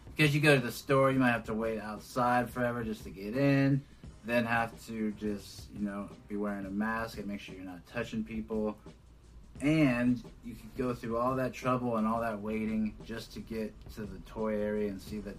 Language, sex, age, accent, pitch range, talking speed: English, male, 30-49, American, 105-120 Hz, 220 wpm